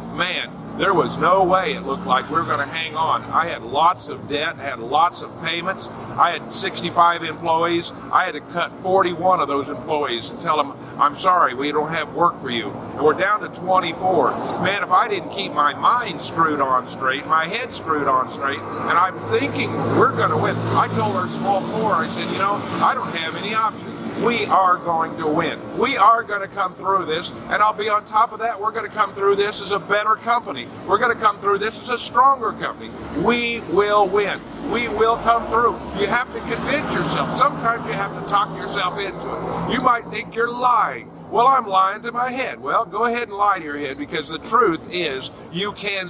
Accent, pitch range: American, 160-220 Hz